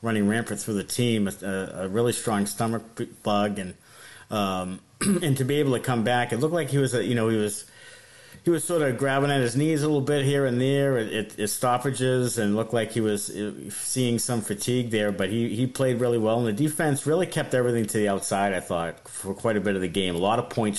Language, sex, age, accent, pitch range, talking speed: English, male, 50-69, American, 105-145 Hz, 240 wpm